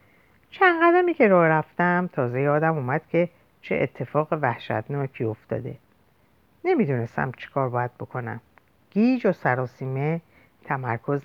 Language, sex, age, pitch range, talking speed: Persian, female, 50-69, 125-175 Hz, 110 wpm